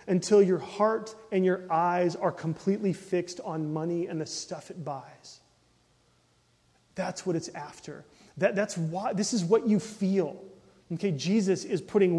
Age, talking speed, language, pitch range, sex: 30-49, 160 wpm, English, 150-185 Hz, male